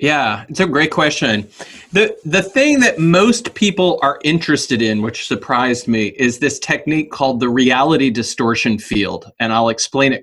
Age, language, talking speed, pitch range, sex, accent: 30-49, English, 170 wpm, 125-175 Hz, male, American